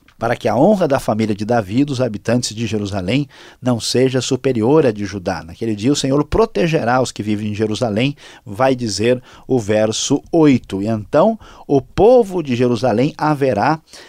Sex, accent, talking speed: male, Brazilian, 175 wpm